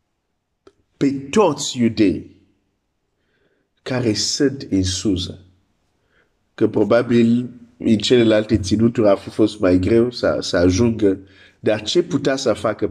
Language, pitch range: Romanian, 95-145 Hz